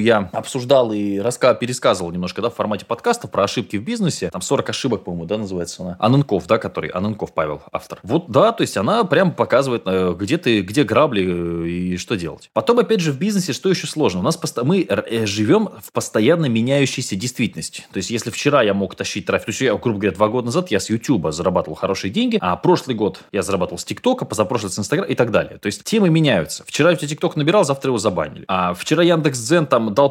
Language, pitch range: Russian, 105-145 Hz